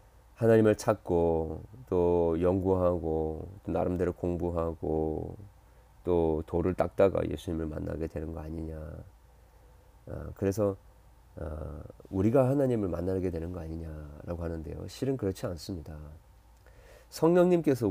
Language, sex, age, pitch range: Korean, male, 40-59, 85-130 Hz